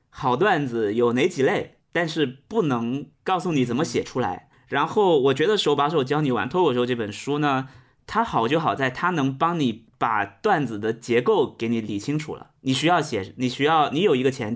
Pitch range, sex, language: 120-155 Hz, male, Chinese